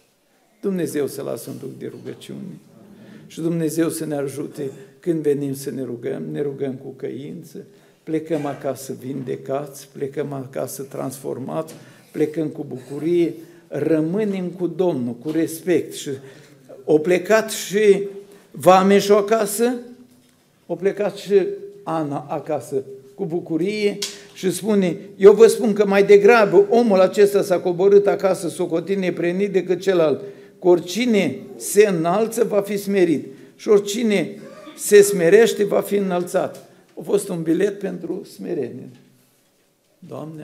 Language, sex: Romanian, male